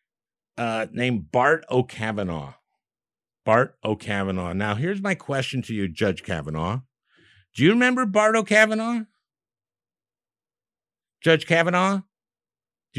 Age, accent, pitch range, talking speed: 60-79, American, 110-155 Hz, 100 wpm